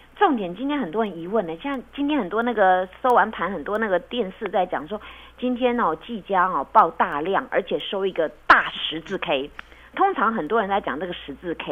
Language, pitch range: Chinese, 170-245 Hz